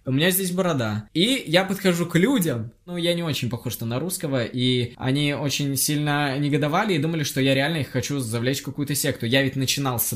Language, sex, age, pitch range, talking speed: Russian, male, 20-39, 135-170 Hz, 215 wpm